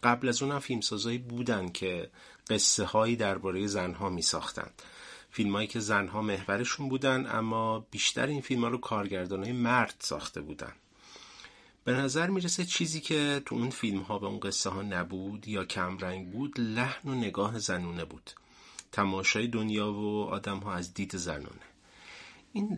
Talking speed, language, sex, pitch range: 165 wpm, Persian, male, 95-120 Hz